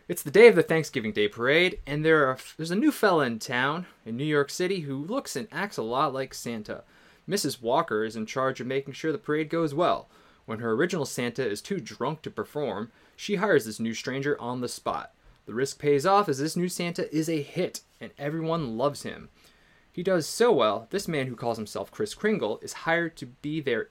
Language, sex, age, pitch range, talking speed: English, male, 20-39, 125-180 Hz, 225 wpm